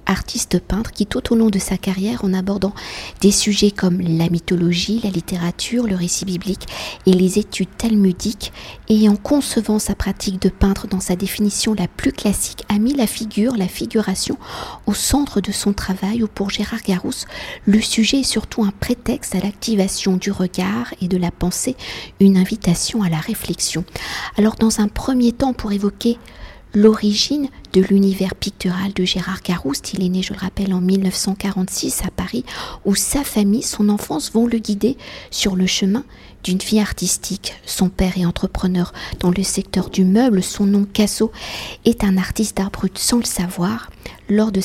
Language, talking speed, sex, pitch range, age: French, 175 wpm, female, 185-220 Hz, 50-69